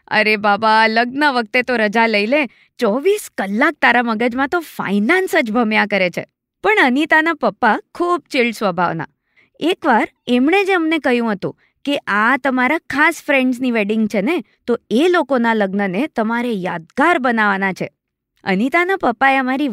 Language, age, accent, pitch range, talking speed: Gujarati, 20-39, native, 210-325 Hz, 150 wpm